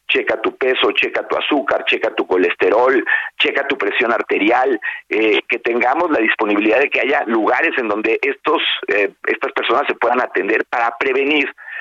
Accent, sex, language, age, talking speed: Mexican, male, Spanish, 50-69, 170 wpm